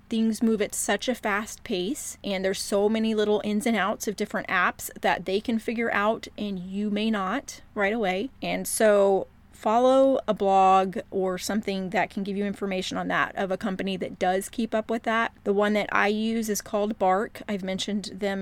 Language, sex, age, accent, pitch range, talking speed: English, female, 30-49, American, 195-220 Hz, 205 wpm